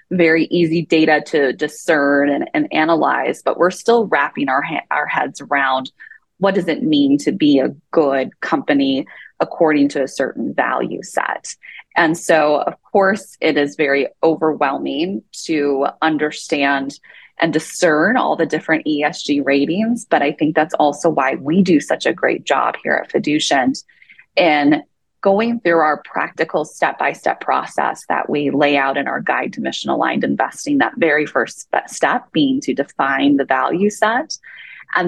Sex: female